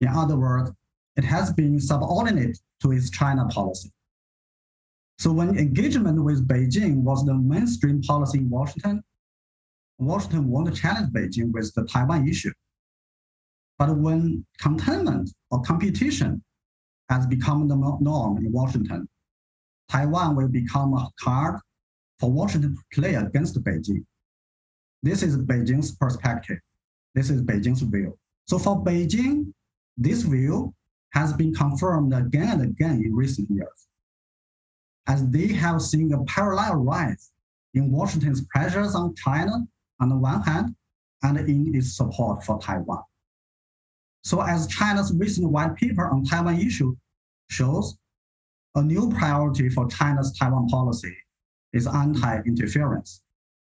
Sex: male